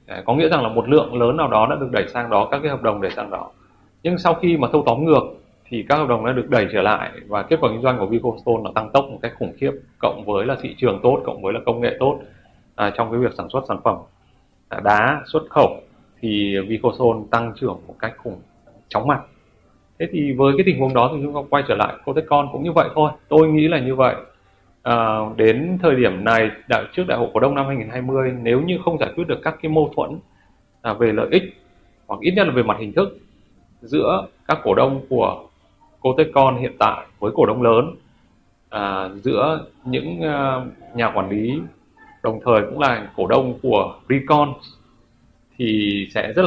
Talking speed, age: 220 wpm, 20-39